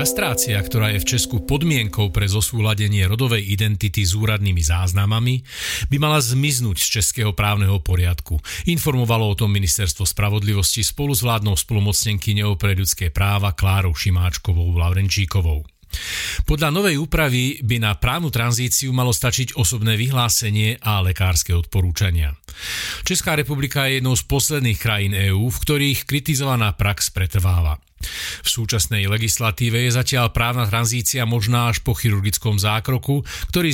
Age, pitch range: 40-59, 100-130 Hz